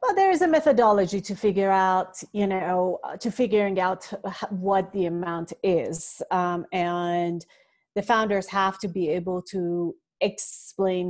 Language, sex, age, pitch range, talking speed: English, female, 30-49, 180-225 Hz, 145 wpm